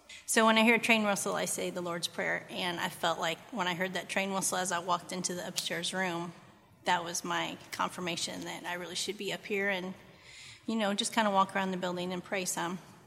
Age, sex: 30-49, female